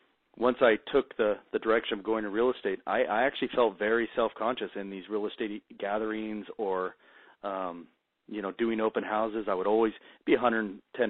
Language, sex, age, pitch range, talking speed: English, male, 40-59, 100-115 Hz, 185 wpm